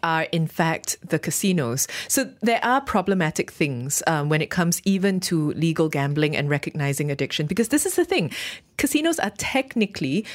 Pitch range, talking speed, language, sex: 150-195 Hz, 170 wpm, English, female